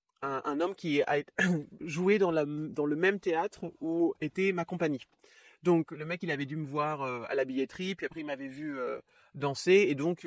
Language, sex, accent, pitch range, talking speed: French, male, French, 145-190 Hz, 195 wpm